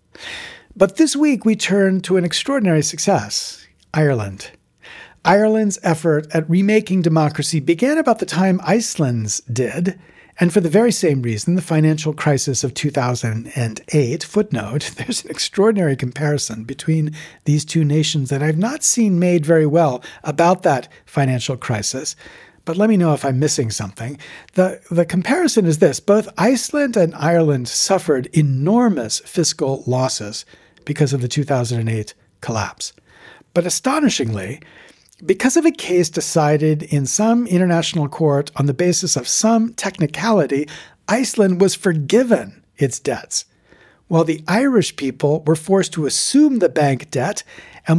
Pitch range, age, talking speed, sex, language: 140-195 Hz, 50-69, 140 wpm, male, English